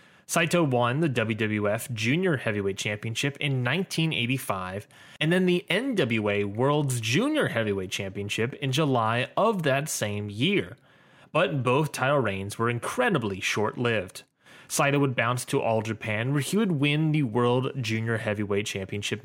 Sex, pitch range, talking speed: male, 110-150 Hz, 140 wpm